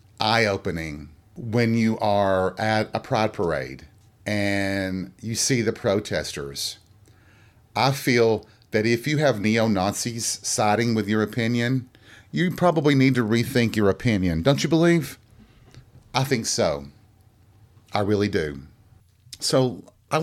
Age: 40-59